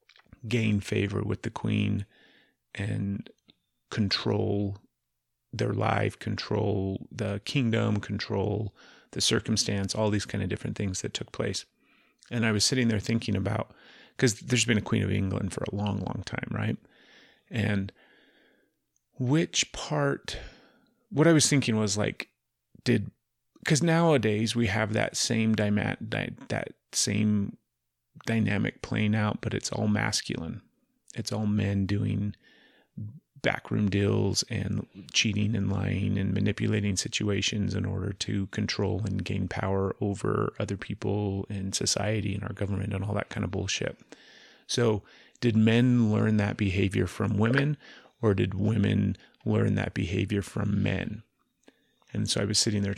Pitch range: 100-110 Hz